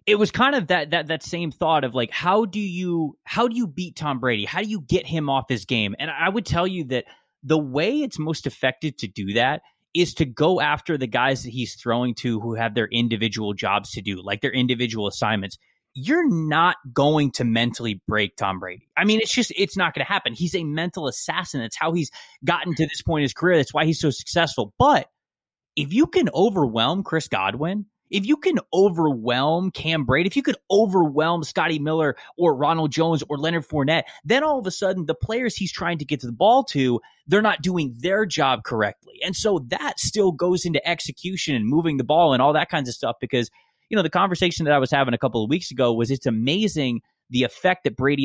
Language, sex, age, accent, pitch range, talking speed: English, male, 20-39, American, 125-180 Hz, 230 wpm